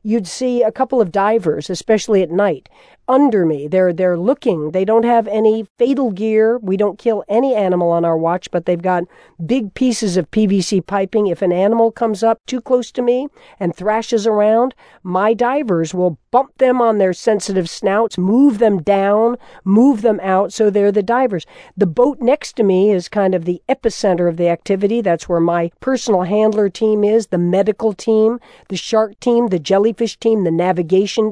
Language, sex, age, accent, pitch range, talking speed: English, female, 50-69, American, 190-235 Hz, 190 wpm